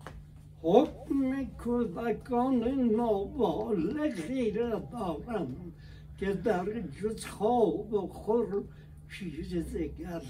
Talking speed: 75 wpm